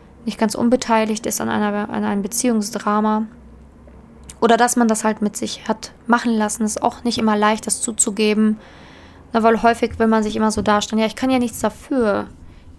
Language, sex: German, female